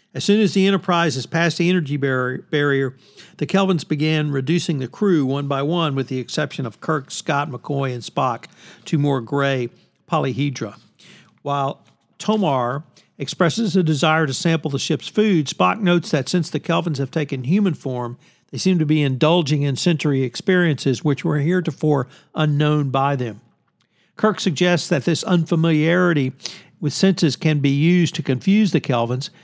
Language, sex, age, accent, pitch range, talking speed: English, male, 50-69, American, 140-175 Hz, 165 wpm